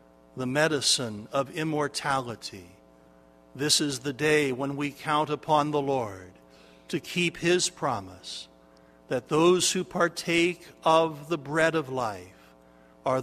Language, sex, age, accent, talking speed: English, male, 60-79, American, 125 wpm